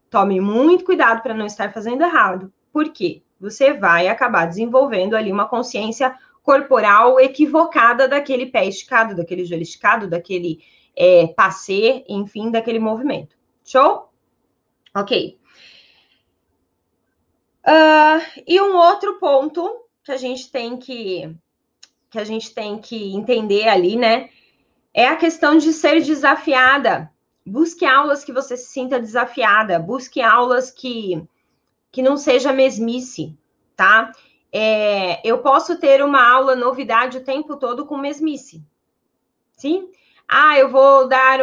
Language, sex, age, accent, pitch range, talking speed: Portuguese, female, 20-39, Brazilian, 225-275 Hz, 125 wpm